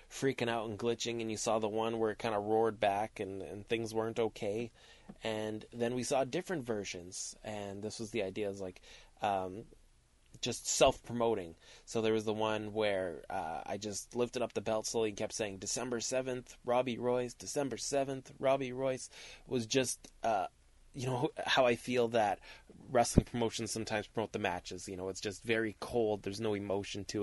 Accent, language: American, English